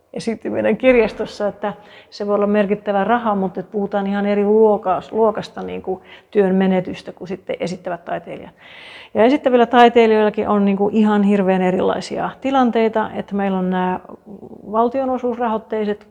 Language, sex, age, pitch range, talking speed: Finnish, female, 40-59, 195-225 Hz, 130 wpm